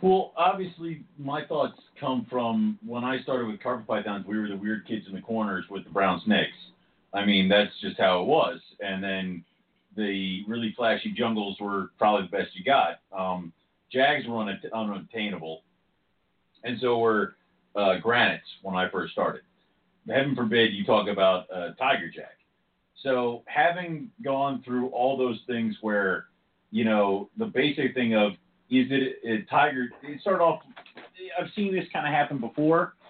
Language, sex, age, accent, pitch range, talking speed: English, male, 40-59, American, 110-165 Hz, 165 wpm